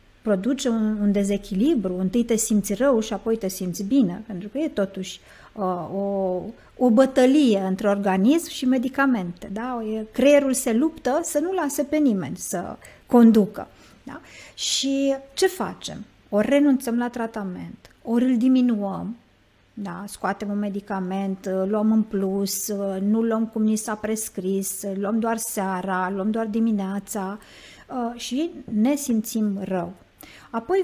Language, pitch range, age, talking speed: Romanian, 200-270 Hz, 50-69, 130 wpm